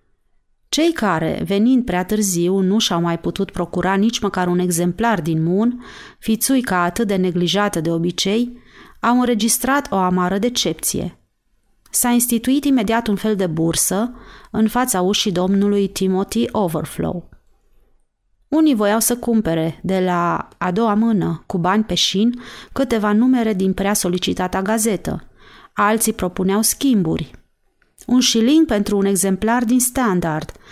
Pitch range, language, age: 185-240 Hz, Romanian, 30-49